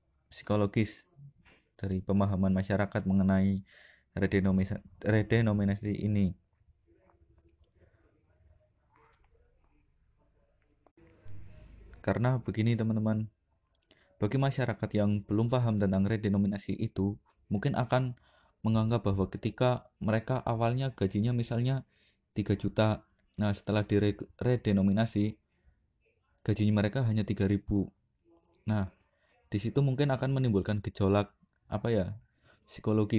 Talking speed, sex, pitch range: 90 wpm, male, 95-115 Hz